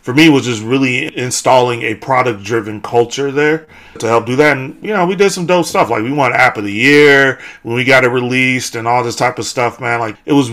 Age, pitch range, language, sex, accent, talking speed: 30-49, 115-135 Hz, English, male, American, 255 wpm